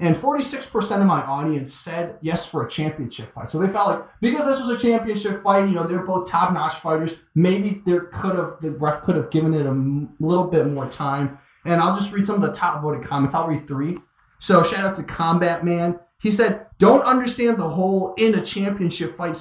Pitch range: 155-195 Hz